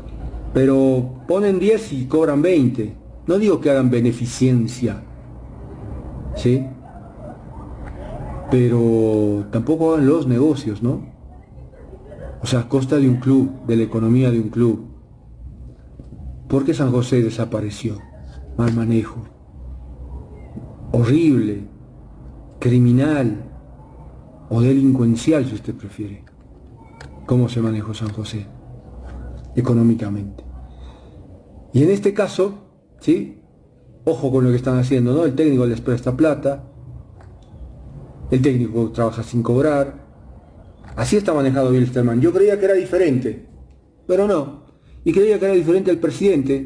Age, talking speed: 40-59, 115 wpm